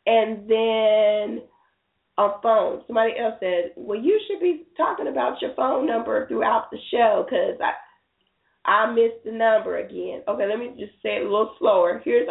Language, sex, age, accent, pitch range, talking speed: English, female, 30-49, American, 210-300 Hz, 175 wpm